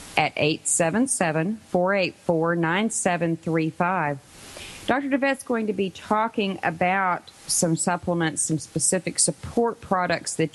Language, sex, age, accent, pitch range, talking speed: English, female, 40-59, American, 165-210 Hz, 90 wpm